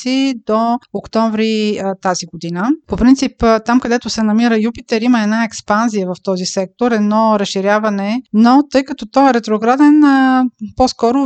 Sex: female